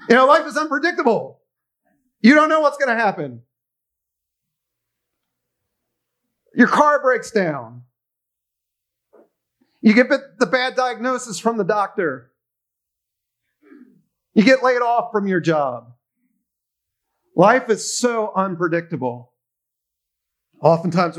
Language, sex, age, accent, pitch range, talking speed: English, male, 40-59, American, 135-205 Hz, 100 wpm